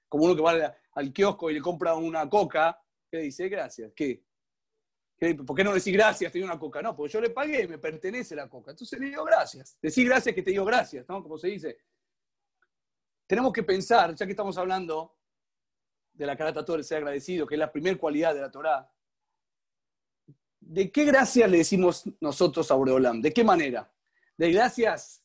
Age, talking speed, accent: 40-59, 200 wpm, Argentinian